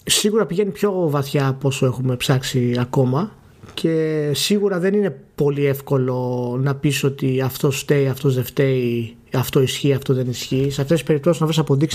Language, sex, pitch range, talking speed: Greek, male, 130-165 Hz, 175 wpm